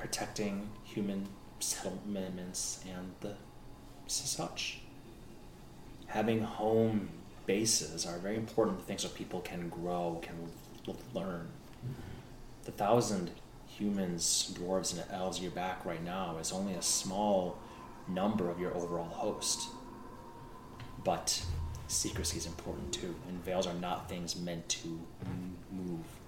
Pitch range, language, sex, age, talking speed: 85-100 Hz, English, male, 30-49, 115 wpm